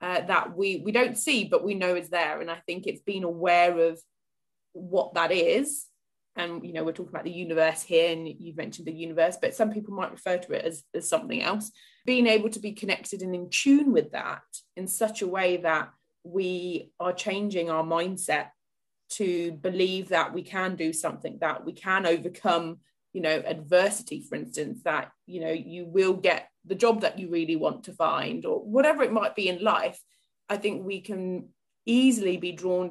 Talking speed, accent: 200 wpm, British